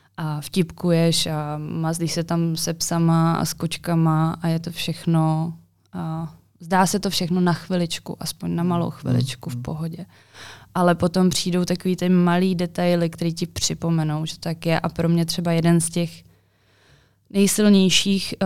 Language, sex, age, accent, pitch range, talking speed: Czech, female, 20-39, native, 155-175 Hz, 160 wpm